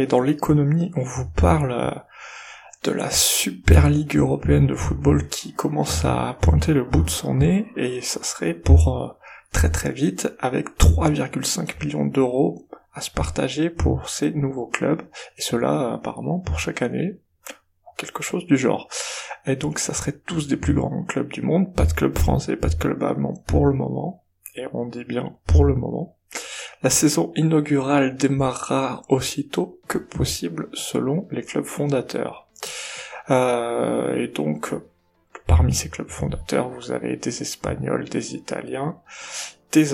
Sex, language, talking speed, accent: male, French, 155 wpm, French